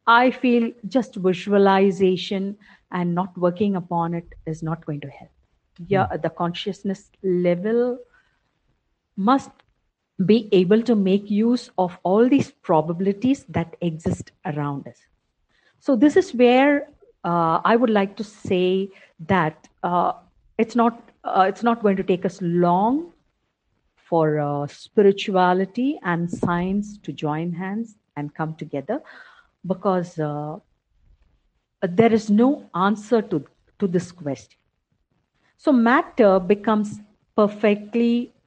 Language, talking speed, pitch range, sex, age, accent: English, 120 wpm, 180-230 Hz, female, 50-69, Indian